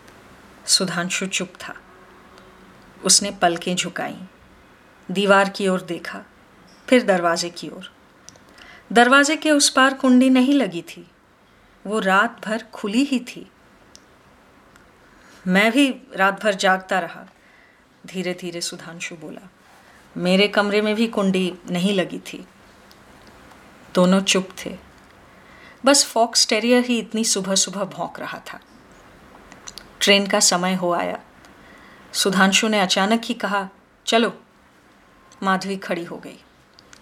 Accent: native